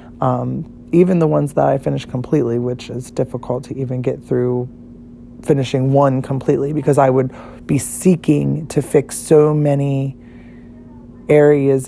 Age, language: 20-39, English